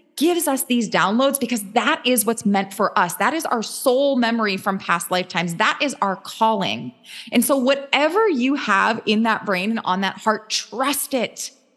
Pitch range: 195-255 Hz